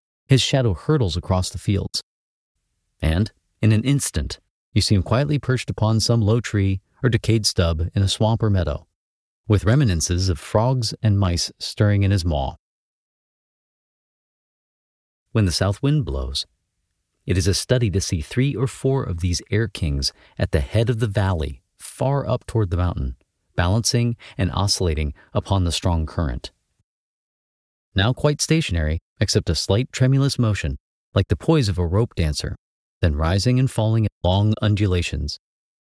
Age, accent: 40-59, American